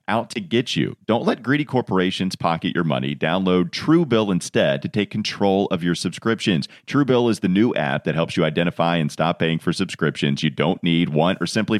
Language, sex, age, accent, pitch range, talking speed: English, male, 40-59, American, 80-105 Hz, 205 wpm